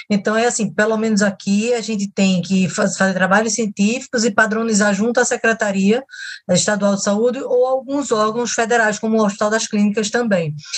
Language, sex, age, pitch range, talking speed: Portuguese, female, 20-39, 205-240 Hz, 185 wpm